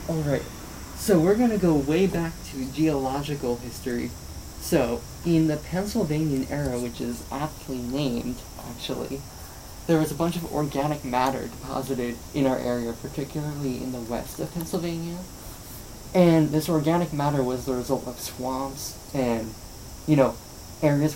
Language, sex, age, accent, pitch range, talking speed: English, male, 20-39, American, 120-155 Hz, 145 wpm